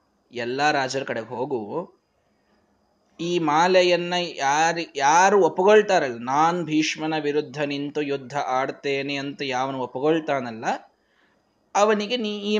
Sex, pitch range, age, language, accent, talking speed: male, 145-200 Hz, 20-39, Kannada, native, 100 wpm